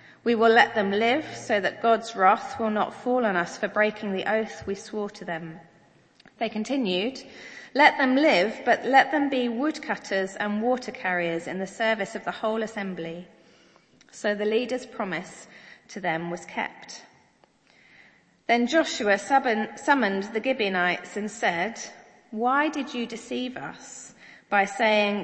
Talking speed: 150 wpm